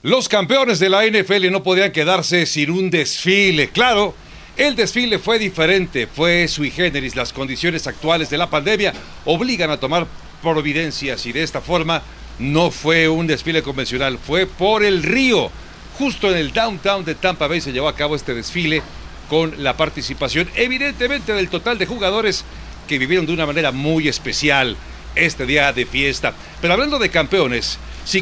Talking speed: 170 wpm